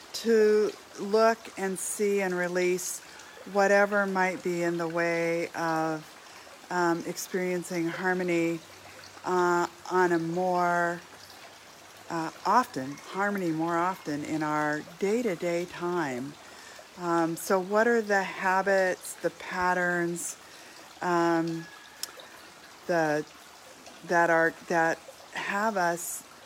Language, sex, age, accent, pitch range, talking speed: English, female, 40-59, American, 170-200 Hz, 100 wpm